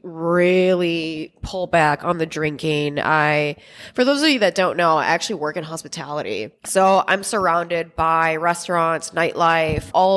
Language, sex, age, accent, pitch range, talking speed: English, female, 20-39, American, 155-185 Hz, 155 wpm